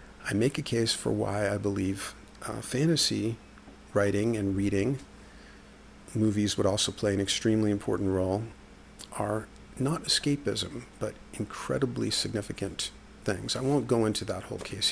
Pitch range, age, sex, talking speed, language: 100-120 Hz, 50-69, male, 140 wpm, English